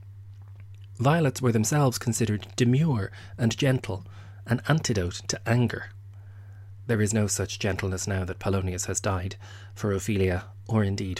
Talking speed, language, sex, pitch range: 135 wpm, English, male, 100-120 Hz